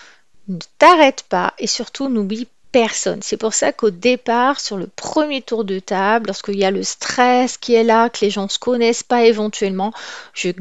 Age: 40-59